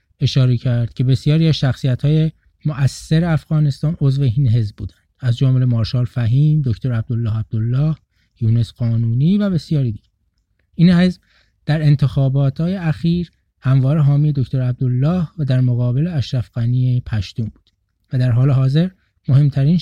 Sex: male